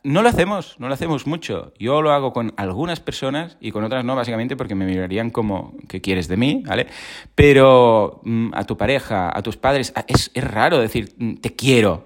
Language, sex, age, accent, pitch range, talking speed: Spanish, male, 30-49, Spanish, 110-135 Hz, 200 wpm